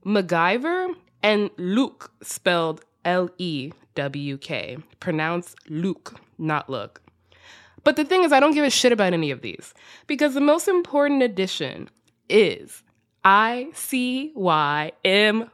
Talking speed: 110 wpm